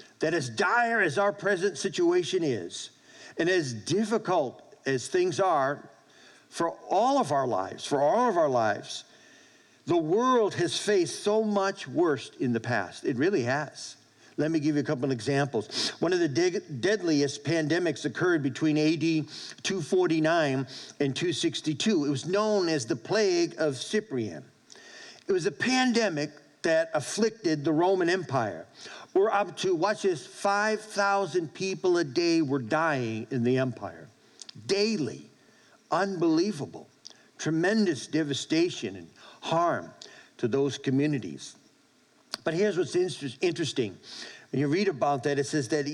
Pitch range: 150-195 Hz